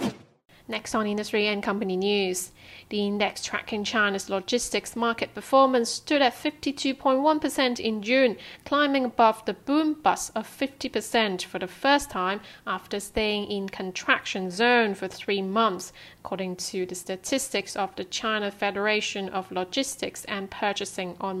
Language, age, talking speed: English, 30-49, 140 wpm